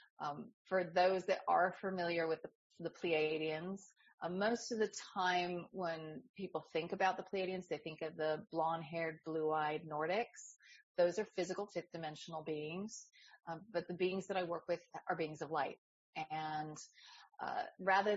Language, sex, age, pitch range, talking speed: English, female, 30-49, 160-190 Hz, 160 wpm